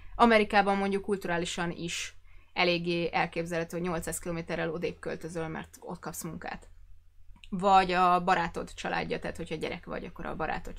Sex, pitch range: female, 165-195 Hz